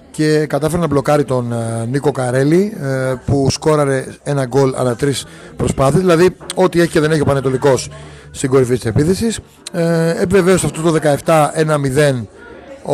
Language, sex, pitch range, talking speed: Greek, male, 135-180 Hz, 155 wpm